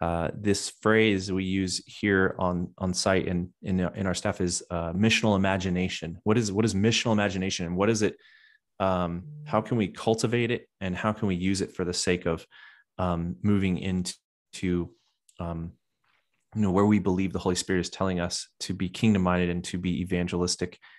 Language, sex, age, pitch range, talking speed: English, male, 30-49, 95-110 Hz, 200 wpm